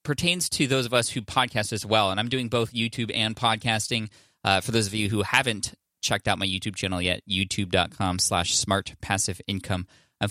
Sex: male